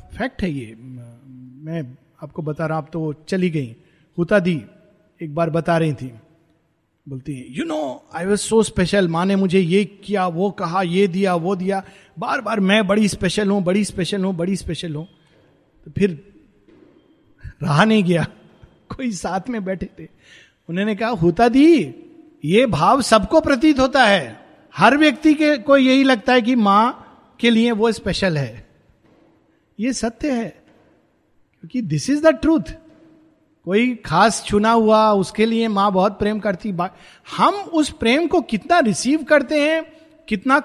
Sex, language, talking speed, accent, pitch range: male, Hindi, 160 wpm, native, 170-260 Hz